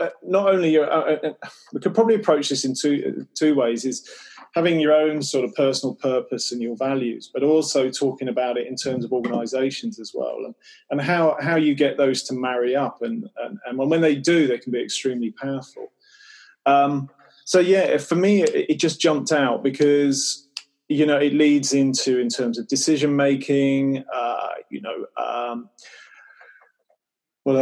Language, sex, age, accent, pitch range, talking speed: English, male, 30-49, British, 130-160 Hz, 175 wpm